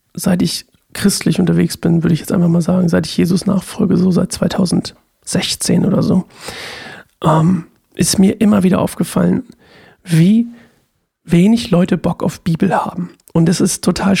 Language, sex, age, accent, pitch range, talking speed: German, male, 40-59, German, 165-195 Hz, 155 wpm